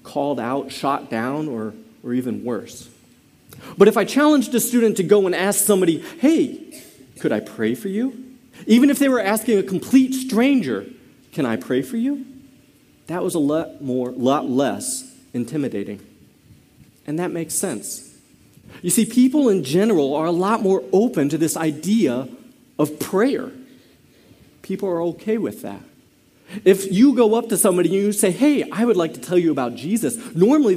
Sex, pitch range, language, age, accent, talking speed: male, 155-250 Hz, English, 40-59, American, 175 wpm